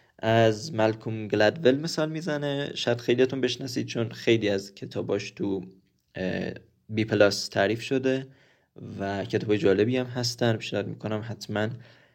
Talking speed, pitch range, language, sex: 125 wpm, 105-130 Hz, Persian, male